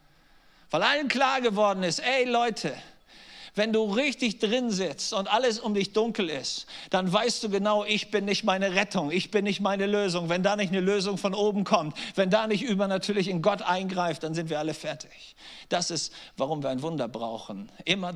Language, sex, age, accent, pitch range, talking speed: German, male, 50-69, German, 160-210 Hz, 200 wpm